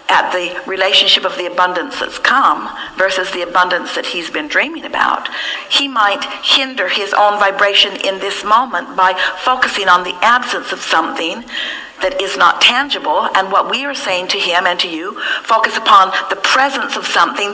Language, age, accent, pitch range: English, 50-69, American, 205-280 Hz